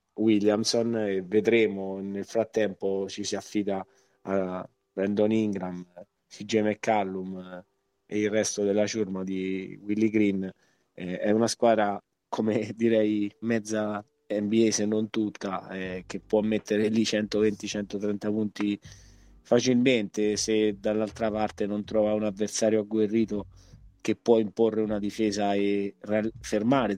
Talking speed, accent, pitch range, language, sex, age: 120 wpm, native, 100-110 Hz, Italian, male, 20-39